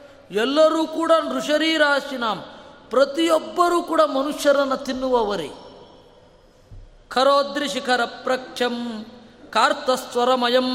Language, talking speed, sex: Kannada, 60 wpm, female